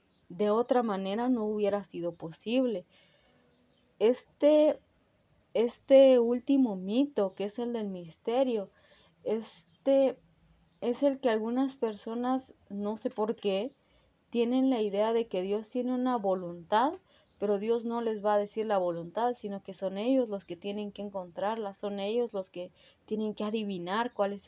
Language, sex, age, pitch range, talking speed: Spanish, female, 30-49, 190-240 Hz, 150 wpm